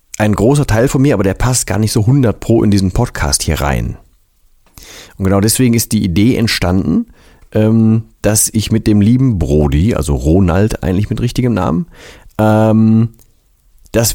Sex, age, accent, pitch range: male, 40-59, German, 90-115 Hz